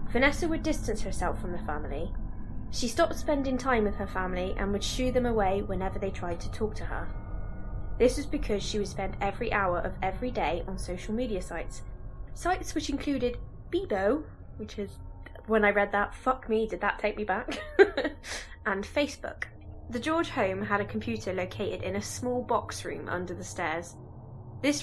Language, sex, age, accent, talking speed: English, female, 20-39, British, 185 wpm